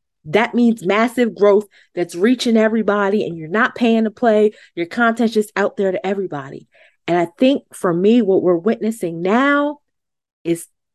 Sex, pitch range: female, 180-240 Hz